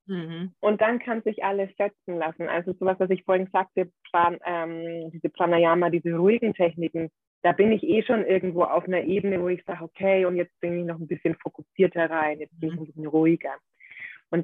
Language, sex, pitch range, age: German, female, 170-195 Hz, 20-39